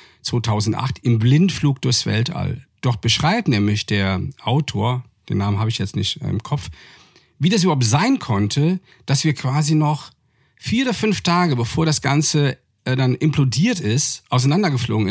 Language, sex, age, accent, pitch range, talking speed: German, male, 50-69, German, 115-145 Hz, 155 wpm